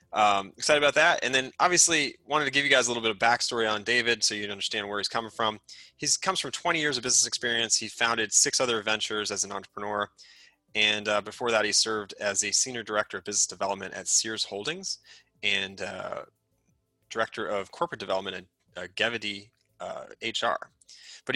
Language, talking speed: English, 195 wpm